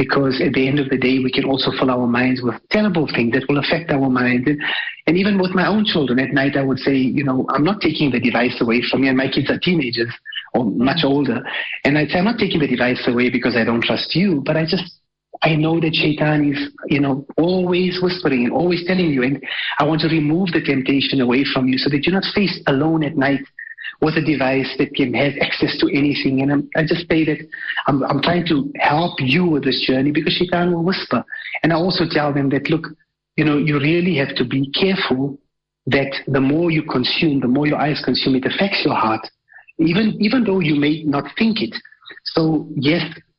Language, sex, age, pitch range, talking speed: English, male, 30-49, 135-170 Hz, 225 wpm